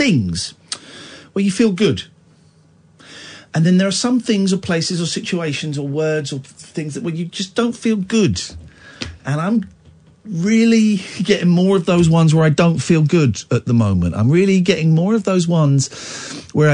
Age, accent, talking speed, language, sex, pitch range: 50-69, British, 180 wpm, English, male, 115-180 Hz